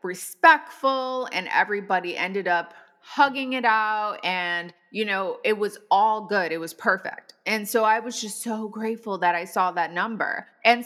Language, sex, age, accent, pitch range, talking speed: English, female, 20-39, American, 180-235 Hz, 170 wpm